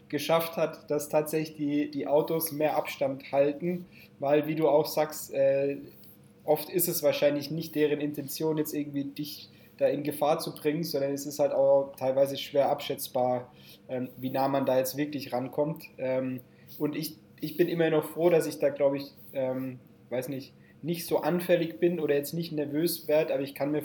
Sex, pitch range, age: male, 130-155 Hz, 20-39